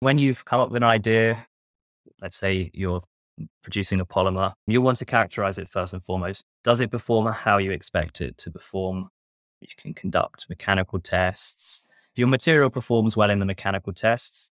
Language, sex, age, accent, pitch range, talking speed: English, male, 20-39, British, 90-105 Hz, 180 wpm